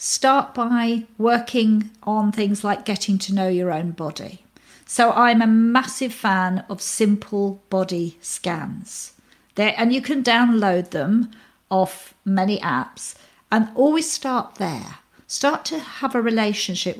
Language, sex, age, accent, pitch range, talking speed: English, female, 50-69, British, 190-255 Hz, 140 wpm